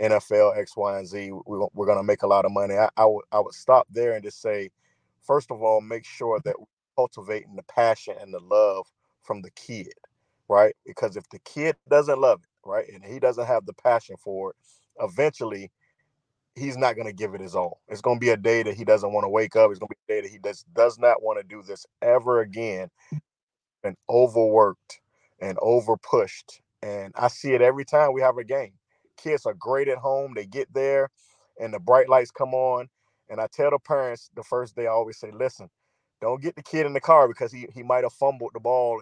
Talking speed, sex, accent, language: 230 wpm, male, American, English